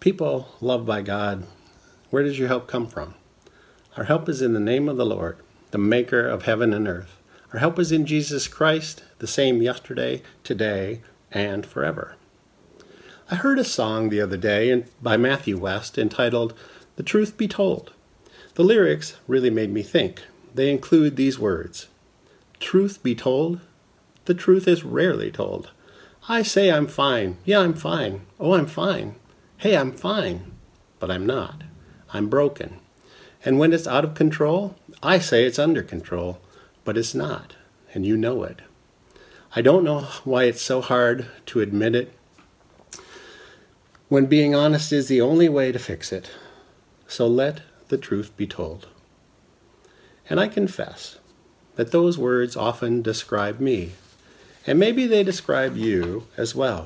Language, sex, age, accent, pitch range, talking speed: English, male, 50-69, American, 105-150 Hz, 155 wpm